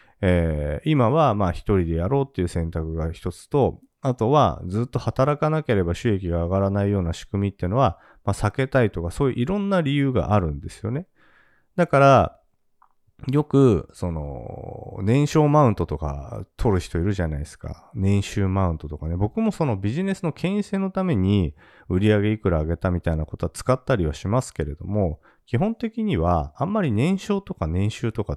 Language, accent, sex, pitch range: Japanese, native, male, 85-135 Hz